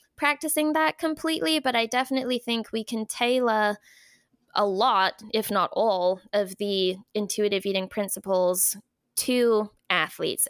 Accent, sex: American, female